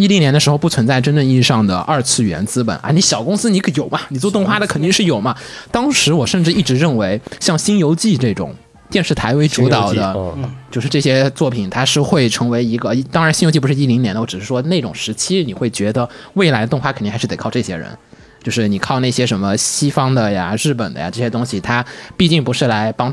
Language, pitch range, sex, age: Chinese, 120-170 Hz, male, 20-39